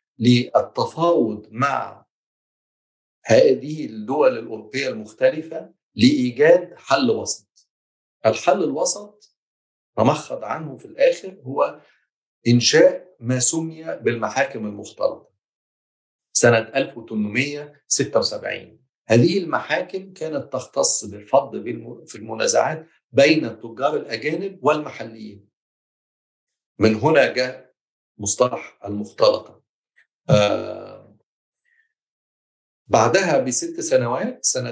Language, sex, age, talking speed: Arabic, male, 50-69, 75 wpm